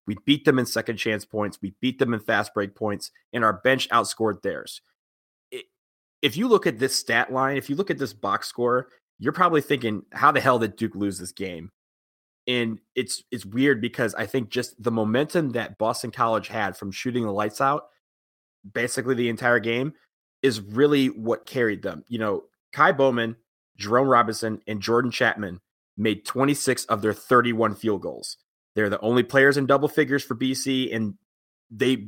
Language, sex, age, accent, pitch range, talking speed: English, male, 30-49, American, 105-130 Hz, 180 wpm